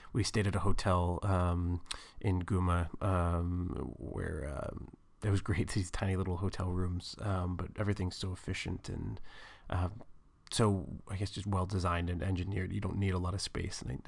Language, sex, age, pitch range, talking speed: English, male, 30-49, 95-105 Hz, 180 wpm